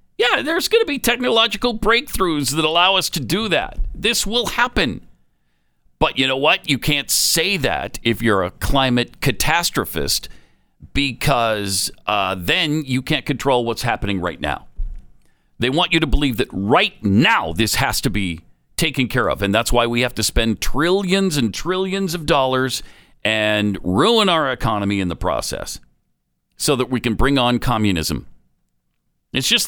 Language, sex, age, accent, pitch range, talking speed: English, male, 50-69, American, 115-185 Hz, 165 wpm